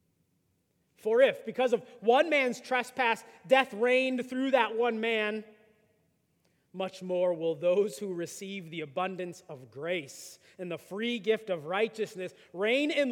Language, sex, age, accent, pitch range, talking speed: English, male, 30-49, American, 175-250 Hz, 140 wpm